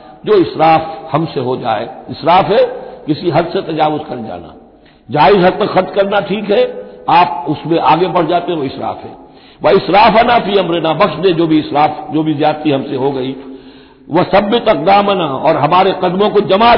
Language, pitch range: Hindi, 150-190 Hz